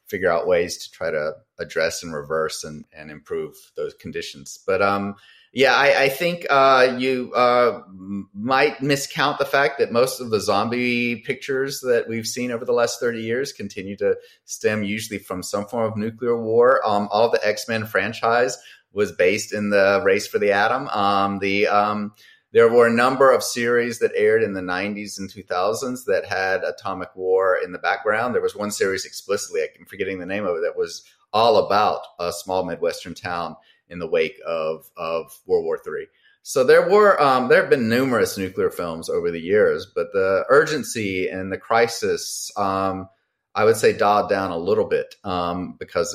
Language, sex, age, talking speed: English, male, 30-49, 185 wpm